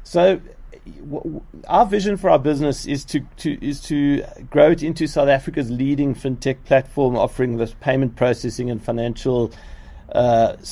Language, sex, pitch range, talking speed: English, male, 115-140 Hz, 155 wpm